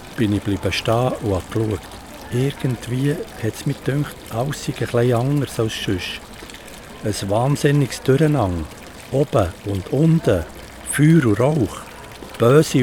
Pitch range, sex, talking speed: 105-140 Hz, male, 125 wpm